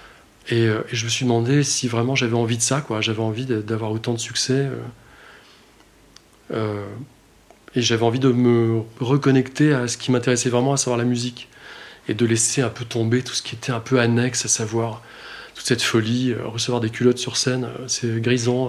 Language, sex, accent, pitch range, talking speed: French, male, French, 115-130 Hz, 205 wpm